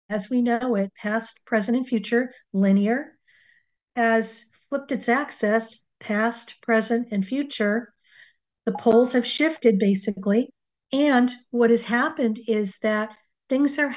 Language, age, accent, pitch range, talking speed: English, 50-69, American, 215-250 Hz, 130 wpm